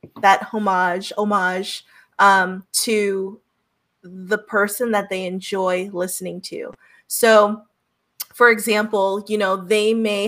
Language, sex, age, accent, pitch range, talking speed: English, female, 20-39, American, 195-230 Hz, 110 wpm